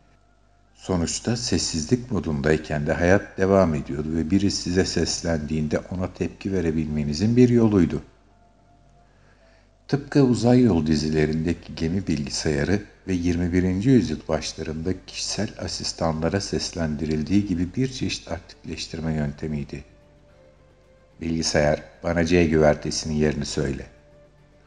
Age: 60-79